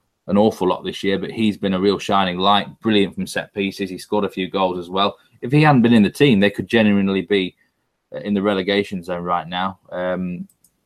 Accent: British